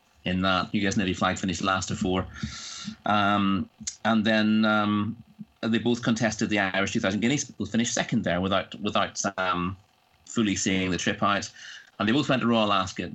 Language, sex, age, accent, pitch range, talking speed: English, male, 30-49, British, 95-110 Hz, 180 wpm